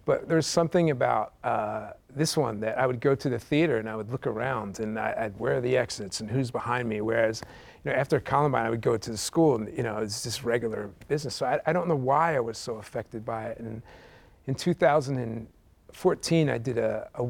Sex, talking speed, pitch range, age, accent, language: male, 230 wpm, 115-140 Hz, 40-59, American, English